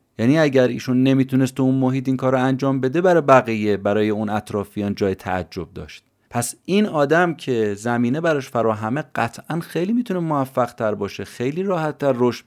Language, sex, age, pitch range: Persian, male, 30-49, 95-125 Hz